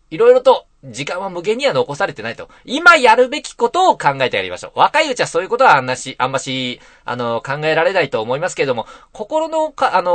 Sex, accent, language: male, native, Japanese